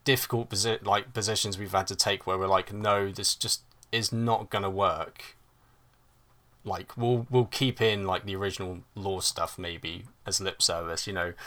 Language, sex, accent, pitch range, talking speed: English, male, British, 95-120 Hz, 180 wpm